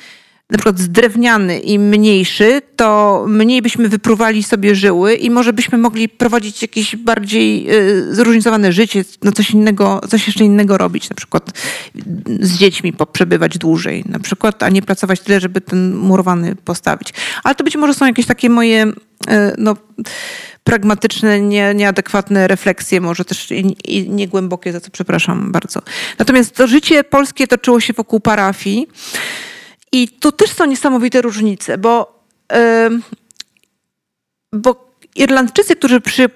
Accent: native